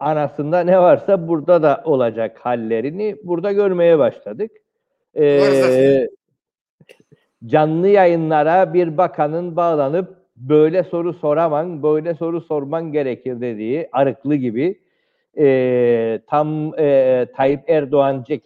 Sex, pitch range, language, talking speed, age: male, 135-180 Hz, Turkish, 100 wpm, 60-79